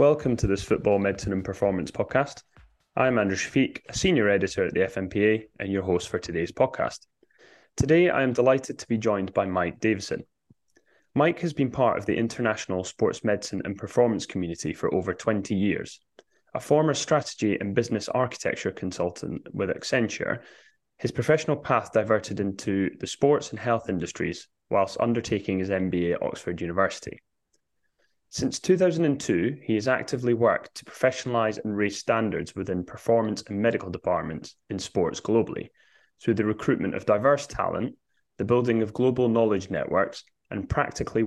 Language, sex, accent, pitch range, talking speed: English, male, British, 95-125 Hz, 155 wpm